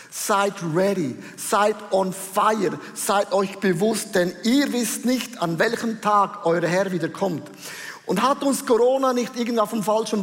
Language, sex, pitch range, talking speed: German, male, 195-235 Hz, 160 wpm